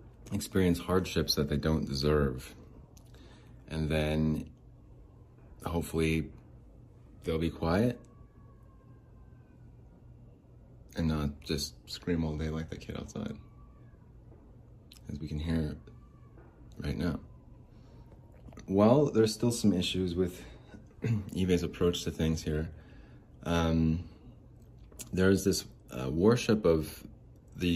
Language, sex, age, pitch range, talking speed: English, male, 30-49, 75-95 Hz, 100 wpm